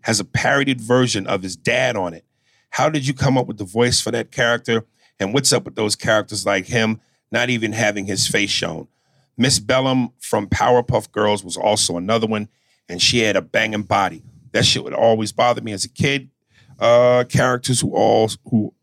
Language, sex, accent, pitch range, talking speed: English, male, American, 95-125 Hz, 200 wpm